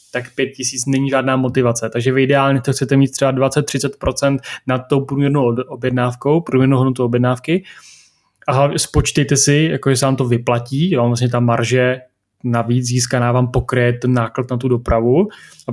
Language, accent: Czech, native